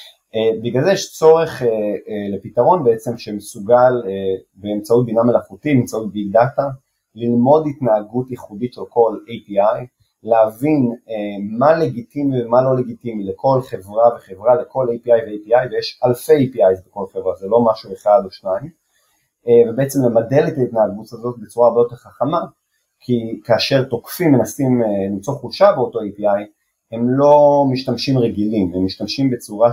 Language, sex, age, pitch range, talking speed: Hebrew, male, 30-49, 105-130 Hz, 145 wpm